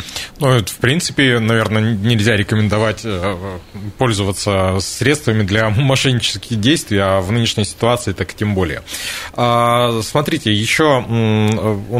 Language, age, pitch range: Russian, 20-39, 105-140 Hz